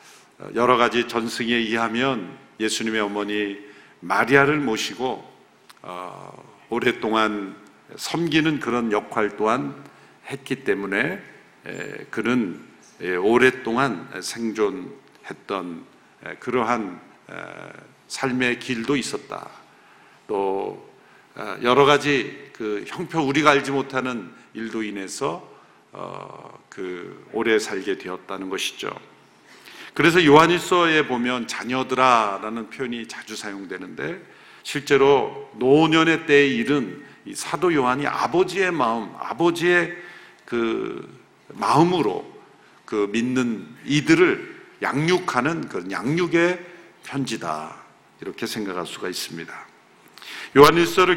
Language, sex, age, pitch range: Korean, male, 50-69, 115-160 Hz